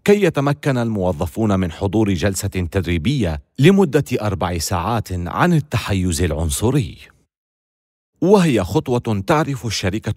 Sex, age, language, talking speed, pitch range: male, 40-59, Arabic, 100 wpm, 95-150 Hz